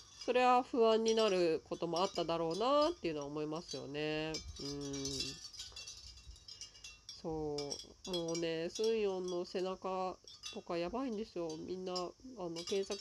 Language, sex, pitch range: Japanese, female, 145-195 Hz